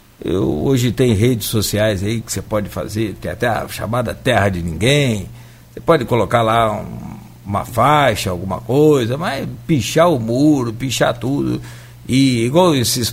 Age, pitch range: 60-79, 115-170 Hz